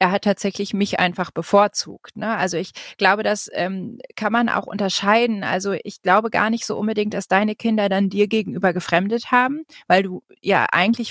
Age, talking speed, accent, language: 30-49, 185 wpm, German, German